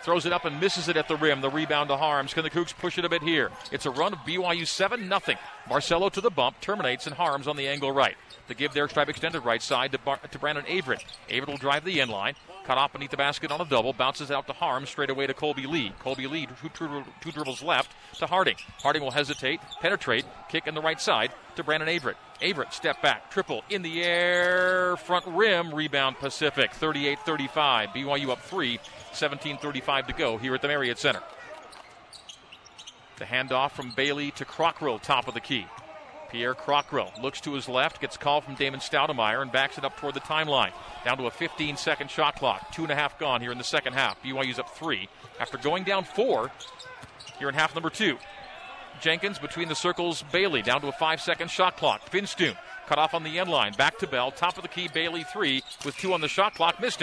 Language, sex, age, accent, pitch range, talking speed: English, male, 40-59, American, 135-170 Hz, 220 wpm